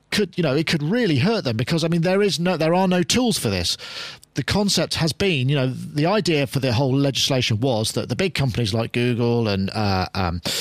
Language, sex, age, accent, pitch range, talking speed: English, male, 40-59, British, 125-170 Hz, 240 wpm